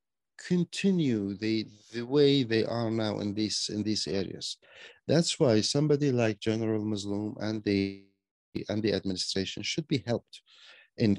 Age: 50-69